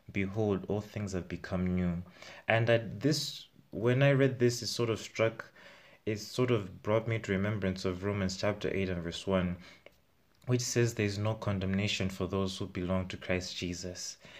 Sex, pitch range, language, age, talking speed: male, 90-110 Hz, English, 20-39, 180 wpm